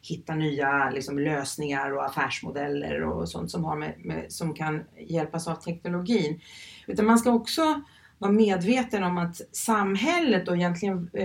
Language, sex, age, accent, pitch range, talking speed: Swedish, female, 30-49, native, 155-200 Hz, 135 wpm